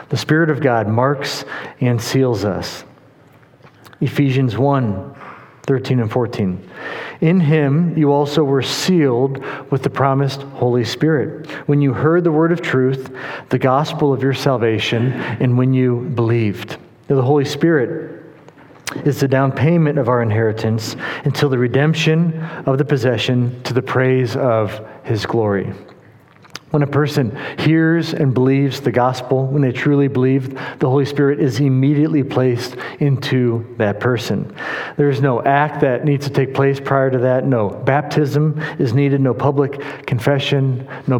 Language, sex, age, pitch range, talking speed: English, male, 40-59, 125-145 Hz, 150 wpm